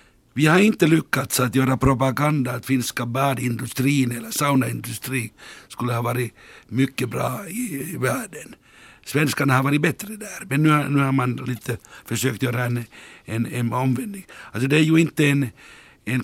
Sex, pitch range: male, 125-145 Hz